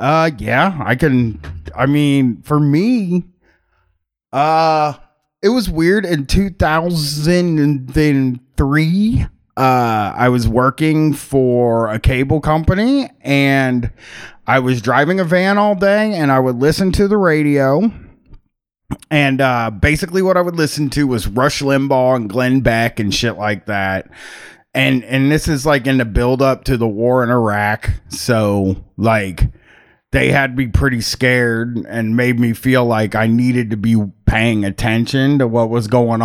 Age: 30-49